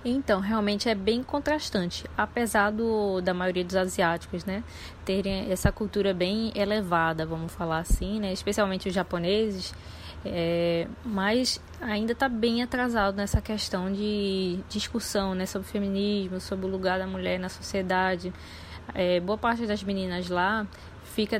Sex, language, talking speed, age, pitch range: female, Portuguese, 145 wpm, 20-39, 185-225 Hz